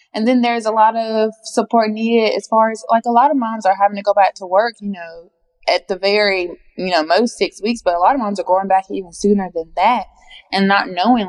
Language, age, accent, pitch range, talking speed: English, 20-39, American, 170-205 Hz, 255 wpm